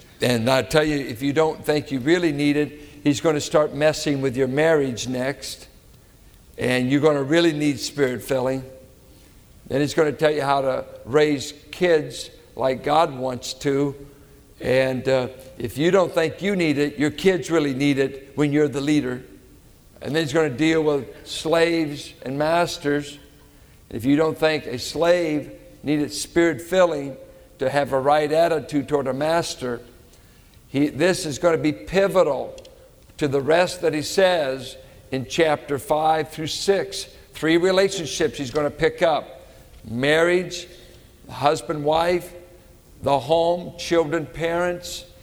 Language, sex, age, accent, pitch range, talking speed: English, male, 60-79, American, 140-170 Hz, 160 wpm